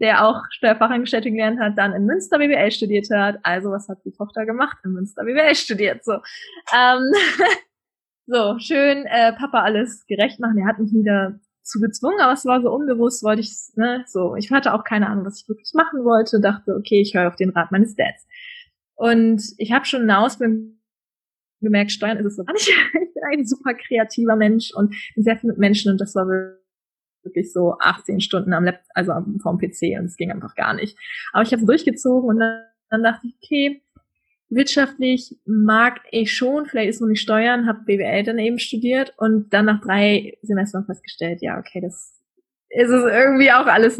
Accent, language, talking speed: German, German, 200 wpm